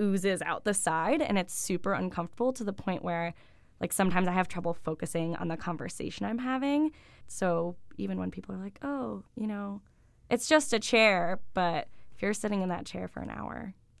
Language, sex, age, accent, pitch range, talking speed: English, female, 10-29, American, 170-210 Hz, 195 wpm